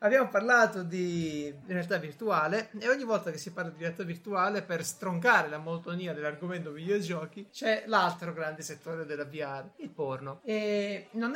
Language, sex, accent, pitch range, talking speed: Italian, male, native, 150-200 Hz, 160 wpm